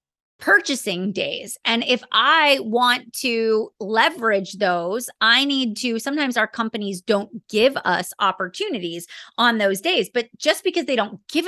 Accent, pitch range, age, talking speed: American, 200-255 Hz, 30-49, 145 wpm